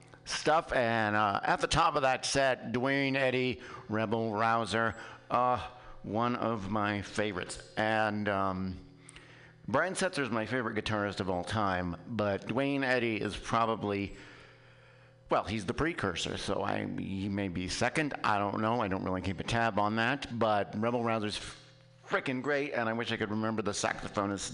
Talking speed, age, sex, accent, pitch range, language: 165 wpm, 50-69, male, American, 105-130 Hz, English